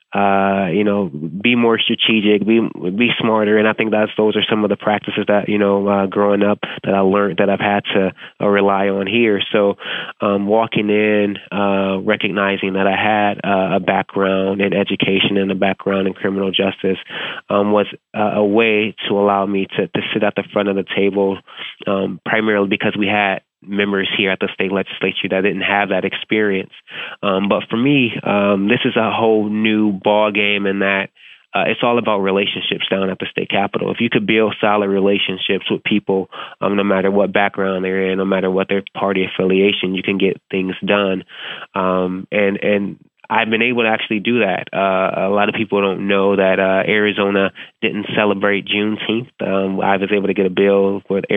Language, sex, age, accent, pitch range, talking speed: English, male, 20-39, American, 95-105 Hz, 200 wpm